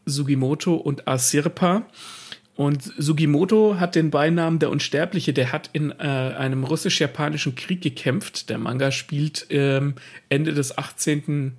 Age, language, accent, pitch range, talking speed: 40-59, German, German, 135-160 Hz, 130 wpm